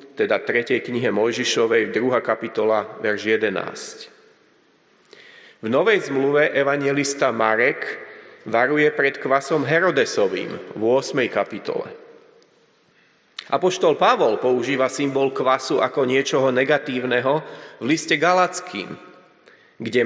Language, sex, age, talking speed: Slovak, male, 30-49, 95 wpm